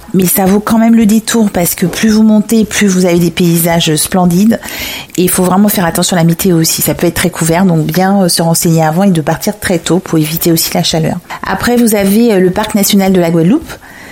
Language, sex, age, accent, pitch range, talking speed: French, female, 40-59, French, 170-200 Hz, 240 wpm